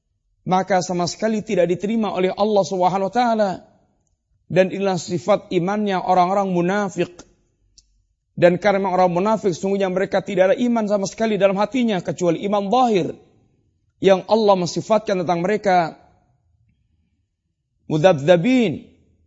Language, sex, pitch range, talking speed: Malay, male, 165-215 Hz, 120 wpm